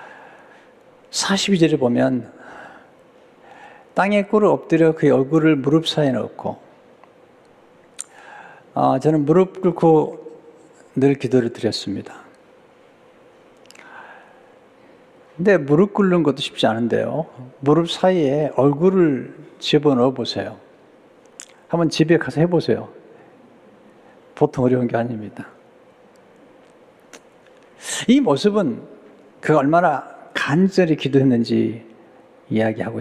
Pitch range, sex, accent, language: 130-175 Hz, male, native, Korean